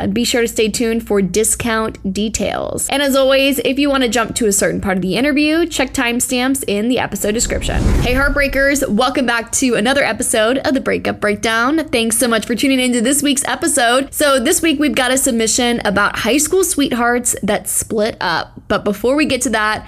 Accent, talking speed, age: American, 210 wpm, 10-29